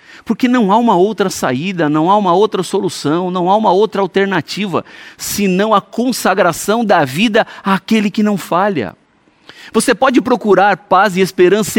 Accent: Brazilian